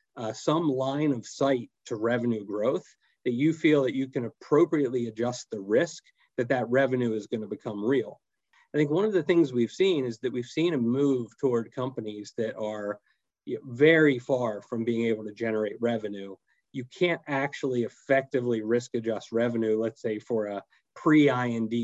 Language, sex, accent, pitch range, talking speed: English, male, American, 115-135 Hz, 175 wpm